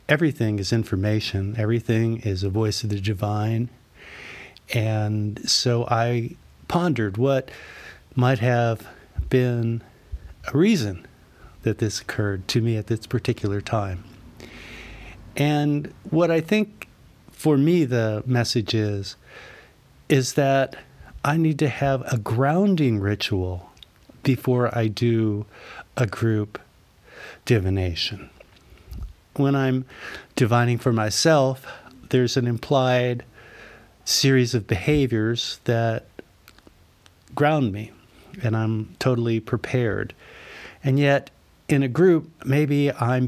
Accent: American